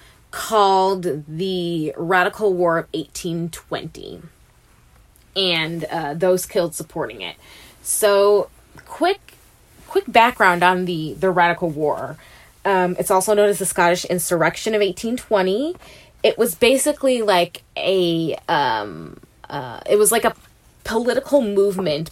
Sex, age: female, 20-39